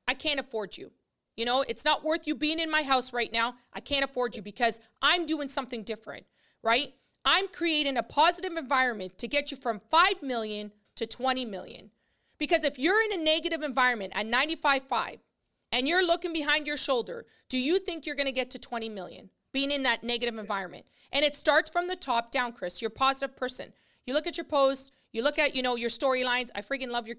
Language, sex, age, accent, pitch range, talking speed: English, female, 40-59, American, 240-305 Hz, 215 wpm